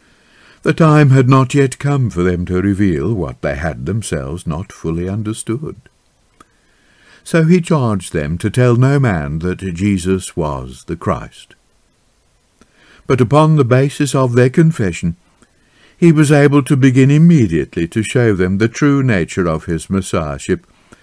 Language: English